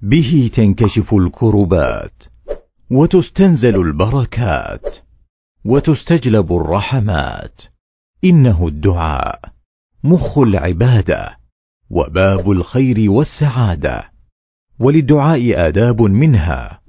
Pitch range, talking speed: 95-135 Hz, 60 wpm